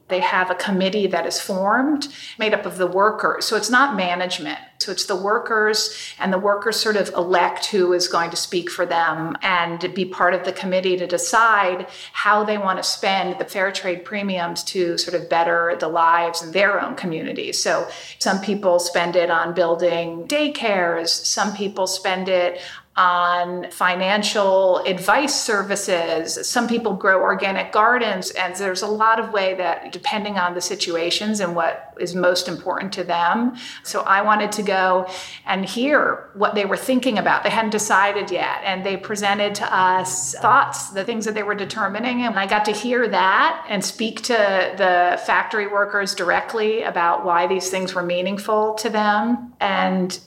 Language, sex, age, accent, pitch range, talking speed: English, female, 40-59, American, 180-210 Hz, 180 wpm